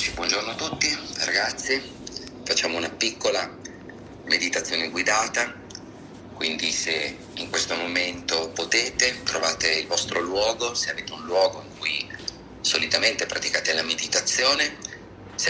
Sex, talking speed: male, 115 wpm